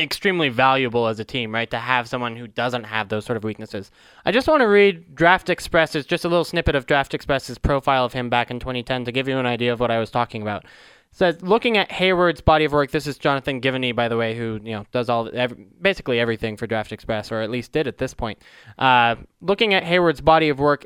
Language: English